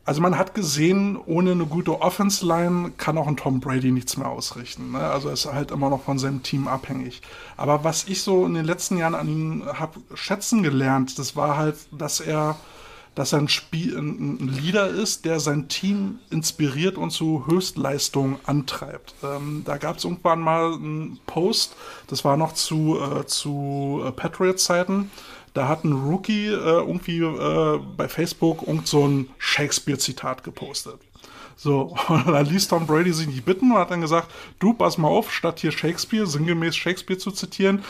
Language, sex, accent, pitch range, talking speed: German, male, German, 145-180 Hz, 175 wpm